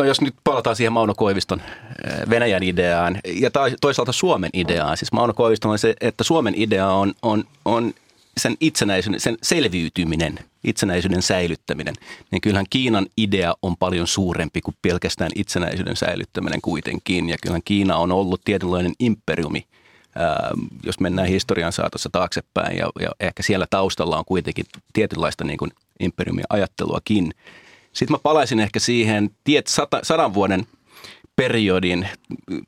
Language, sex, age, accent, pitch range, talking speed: Finnish, male, 30-49, native, 90-105 Hz, 140 wpm